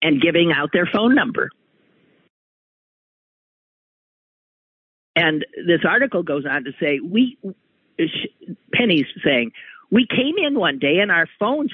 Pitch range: 155-220 Hz